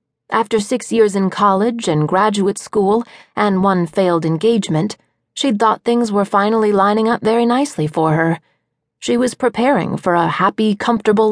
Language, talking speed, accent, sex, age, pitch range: English, 160 wpm, American, female, 30-49, 180-230 Hz